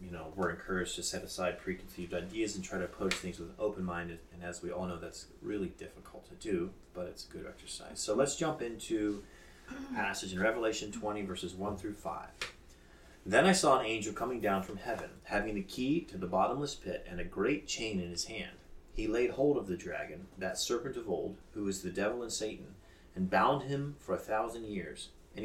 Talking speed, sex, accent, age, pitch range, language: 215 wpm, male, American, 30-49, 85-110 Hz, English